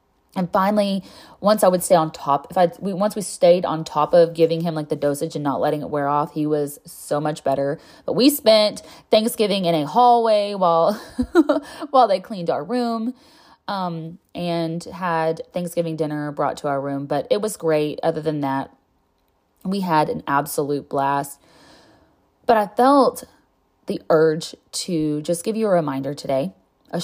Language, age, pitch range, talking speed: English, 20-39, 155-195 Hz, 180 wpm